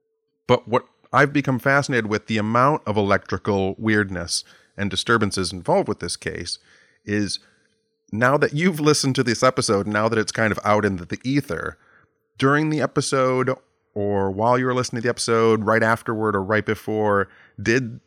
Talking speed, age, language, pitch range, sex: 165 wpm, 30-49, English, 95-120 Hz, male